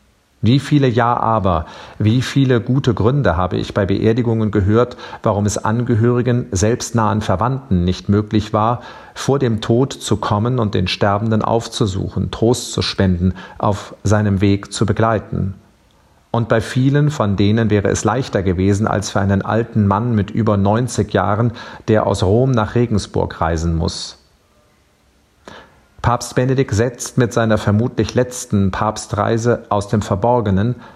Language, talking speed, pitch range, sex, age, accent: German, 145 wpm, 100-120 Hz, male, 40-59, German